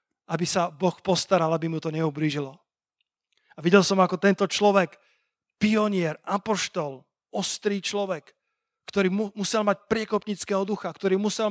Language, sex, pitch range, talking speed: Slovak, male, 175-205 Hz, 135 wpm